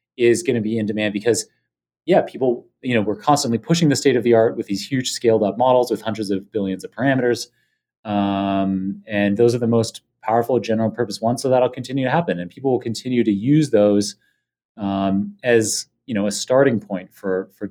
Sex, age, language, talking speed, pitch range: male, 30-49, English, 210 wpm, 100-130 Hz